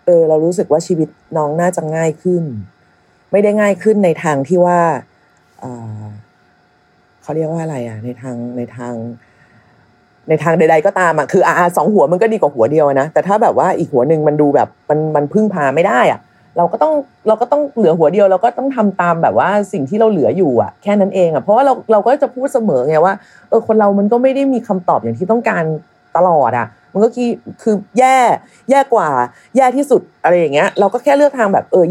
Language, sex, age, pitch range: Thai, female, 30-49, 155-220 Hz